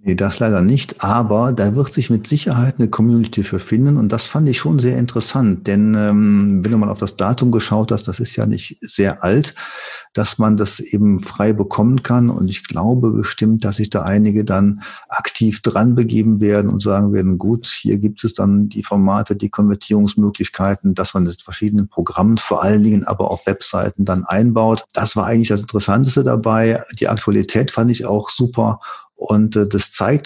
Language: German